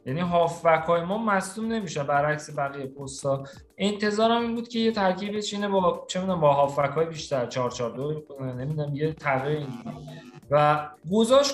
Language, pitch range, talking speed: Persian, 135-180 Hz, 150 wpm